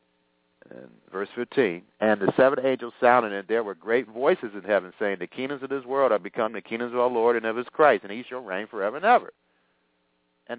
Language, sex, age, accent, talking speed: English, male, 50-69, American, 225 wpm